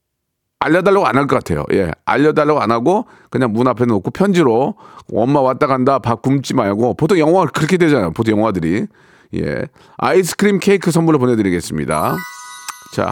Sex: male